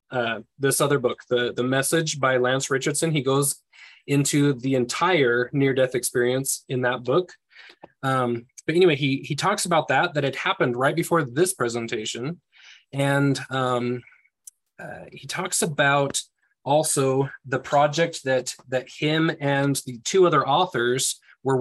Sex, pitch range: male, 125-155 Hz